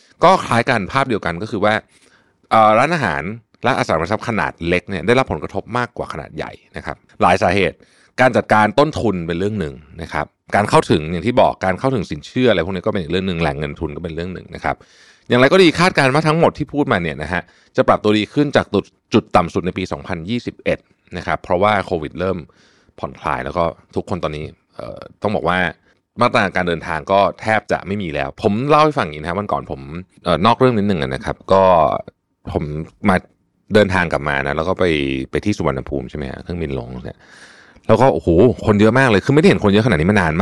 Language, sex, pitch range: Thai, male, 80-115 Hz